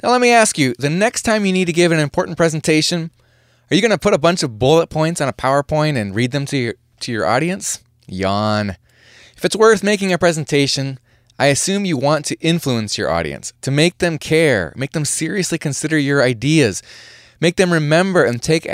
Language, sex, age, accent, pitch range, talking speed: English, male, 20-39, American, 120-160 Hz, 210 wpm